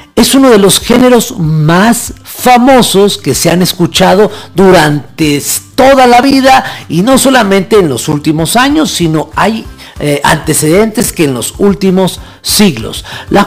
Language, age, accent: Spanish, 50-69, Mexican